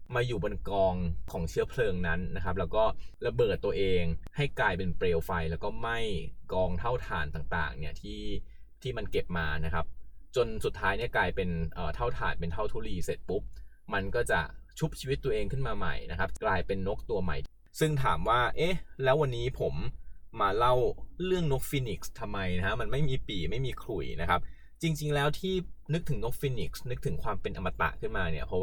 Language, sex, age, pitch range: Thai, male, 20-39, 85-130 Hz